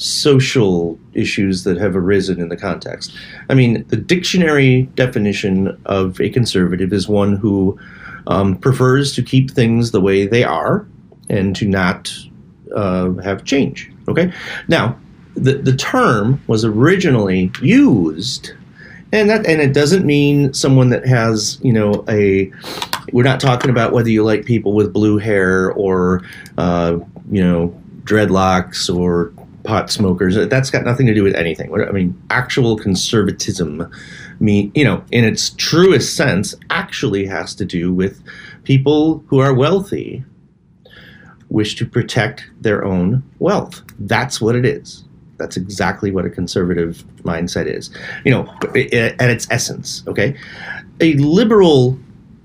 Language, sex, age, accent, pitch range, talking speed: English, male, 40-59, American, 95-130 Hz, 140 wpm